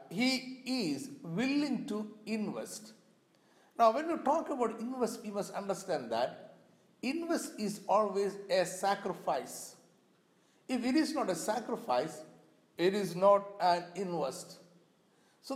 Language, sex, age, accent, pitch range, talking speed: Malayalam, male, 60-79, native, 185-260 Hz, 125 wpm